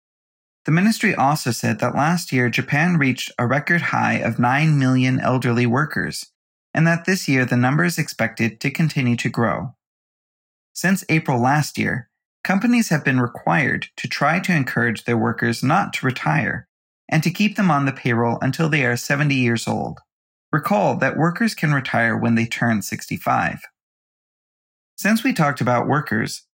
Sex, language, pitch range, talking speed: male, English, 120-170 Hz, 165 wpm